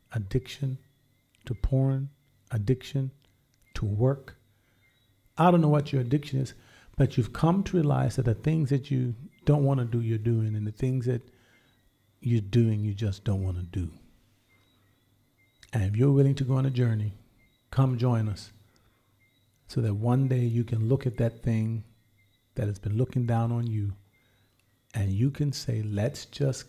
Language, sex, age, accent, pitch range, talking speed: English, male, 40-59, American, 105-130 Hz, 170 wpm